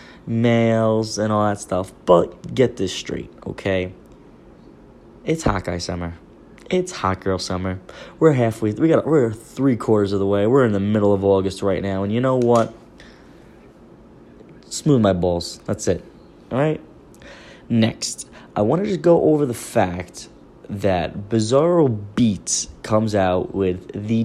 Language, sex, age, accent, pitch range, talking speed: English, male, 20-39, American, 95-125 Hz, 160 wpm